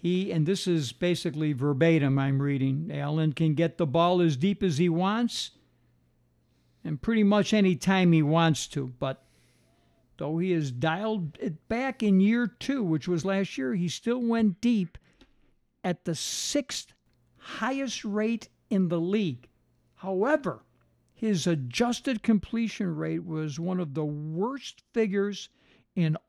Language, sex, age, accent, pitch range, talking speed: English, male, 60-79, American, 160-215 Hz, 145 wpm